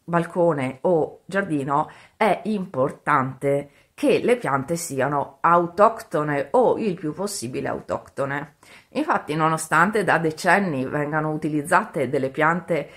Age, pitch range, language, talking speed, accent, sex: 30-49, 140-175 Hz, Italian, 105 wpm, native, female